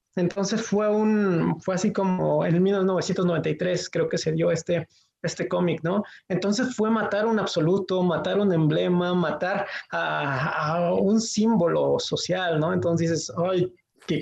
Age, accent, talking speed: 20-39, Mexican, 150 wpm